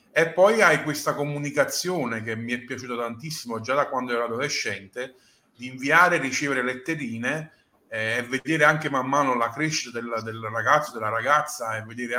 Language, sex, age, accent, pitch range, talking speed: Italian, male, 30-49, native, 120-150 Hz, 165 wpm